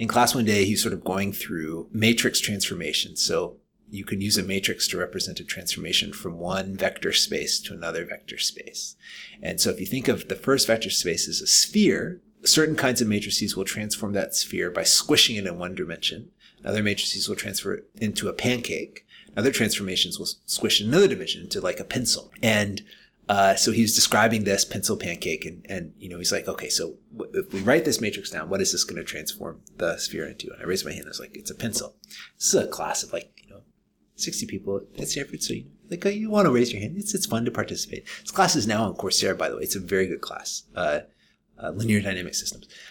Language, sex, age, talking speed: English, male, 30-49, 230 wpm